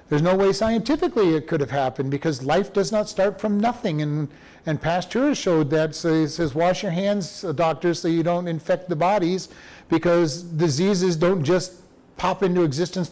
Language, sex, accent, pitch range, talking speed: English, male, American, 155-195 Hz, 185 wpm